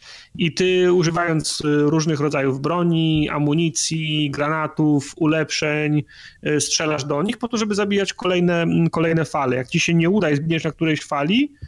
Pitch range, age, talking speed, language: 145-175 Hz, 30-49, 150 wpm, Polish